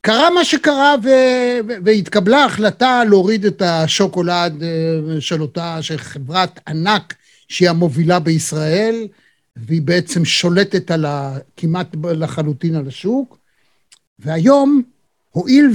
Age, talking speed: 50-69, 105 wpm